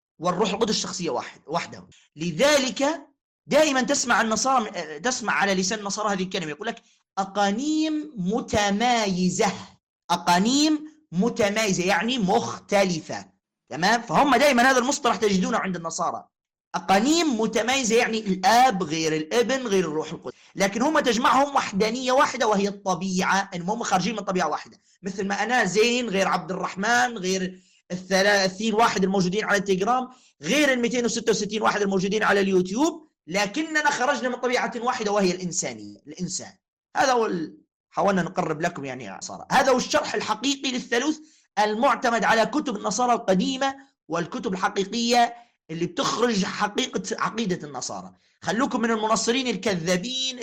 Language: Arabic